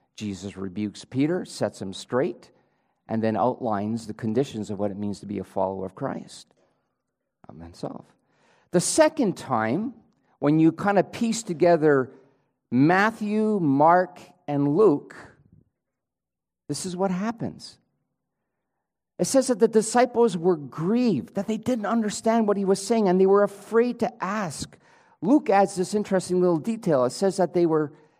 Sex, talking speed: male, 150 wpm